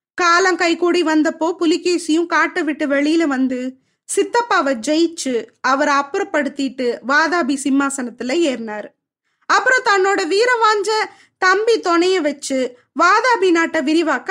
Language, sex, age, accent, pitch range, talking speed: Tamil, female, 20-39, native, 295-380 Hz, 110 wpm